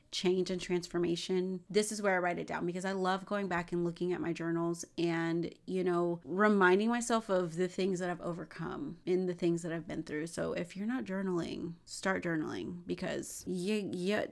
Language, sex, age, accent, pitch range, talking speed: English, female, 30-49, American, 175-205 Hz, 200 wpm